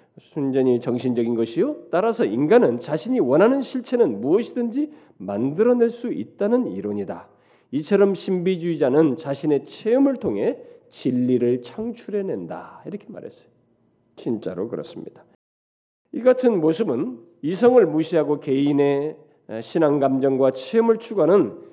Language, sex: Korean, male